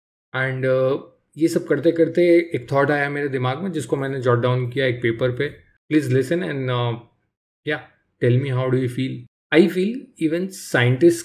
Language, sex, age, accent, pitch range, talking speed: English, male, 20-39, Indian, 125-155 Hz, 160 wpm